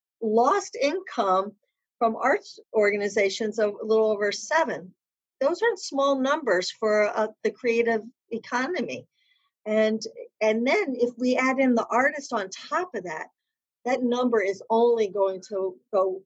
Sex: female